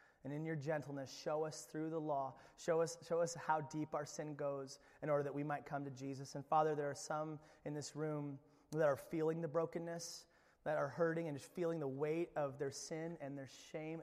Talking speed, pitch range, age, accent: 225 wpm, 140-160 Hz, 30-49, American